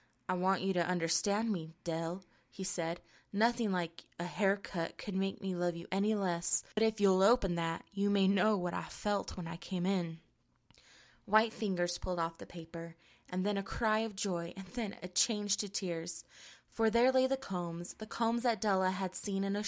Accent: American